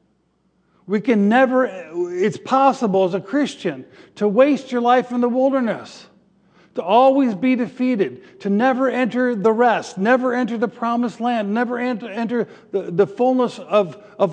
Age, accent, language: 50-69, American, English